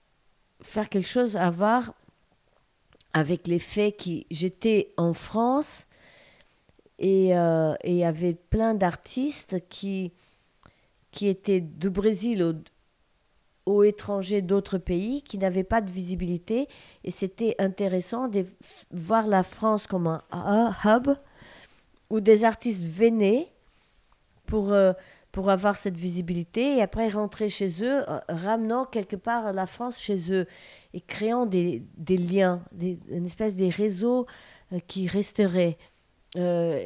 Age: 40-59